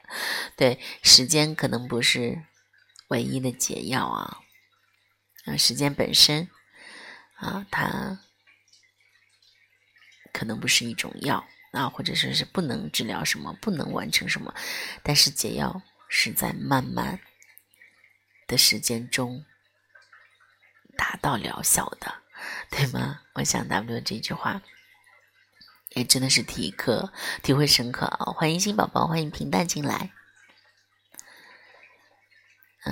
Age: 30-49